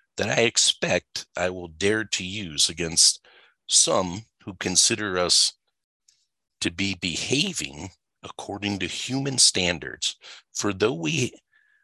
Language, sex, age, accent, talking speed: English, male, 50-69, American, 115 wpm